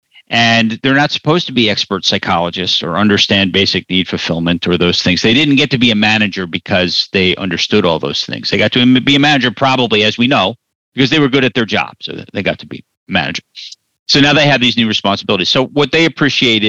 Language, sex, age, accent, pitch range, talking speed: English, male, 50-69, American, 105-135 Hz, 230 wpm